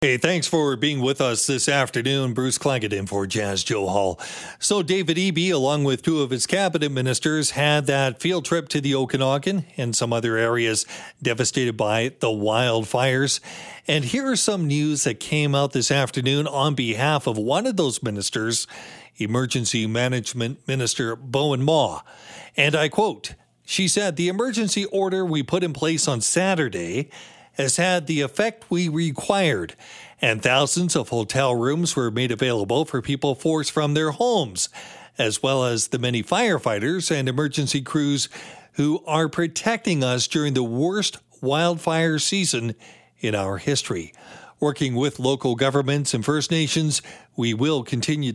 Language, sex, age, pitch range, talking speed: English, male, 40-59, 125-160 Hz, 160 wpm